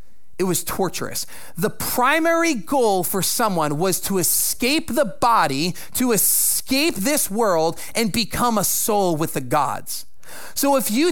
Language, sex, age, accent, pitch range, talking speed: English, male, 30-49, American, 180-275 Hz, 145 wpm